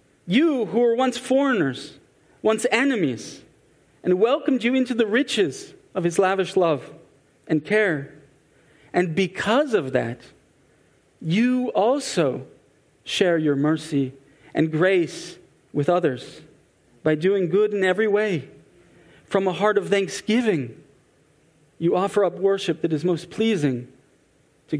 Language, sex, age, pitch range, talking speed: English, male, 40-59, 160-215 Hz, 125 wpm